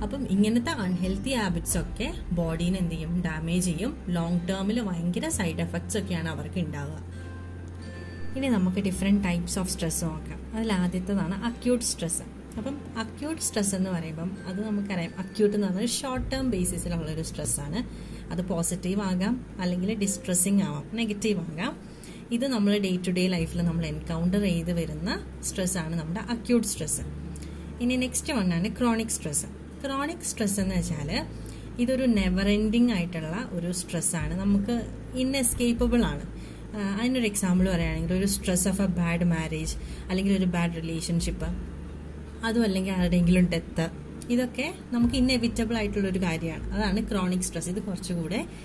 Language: Malayalam